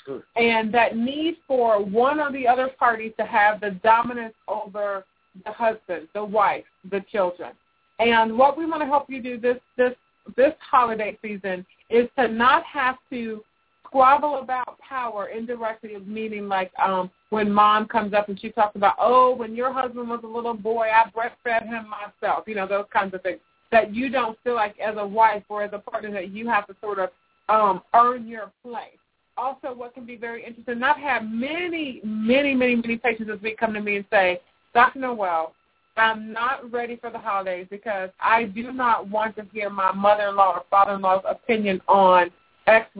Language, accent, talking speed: English, American, 190 wpm